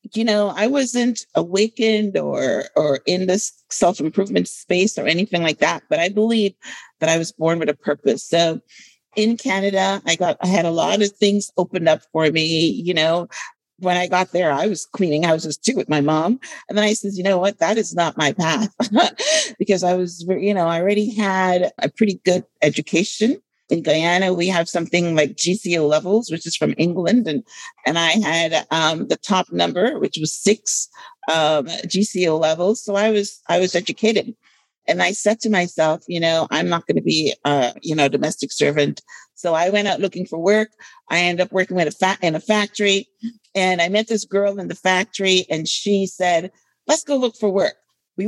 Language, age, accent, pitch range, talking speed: English, 50-69, American, 165-215 Hz, 205 wpm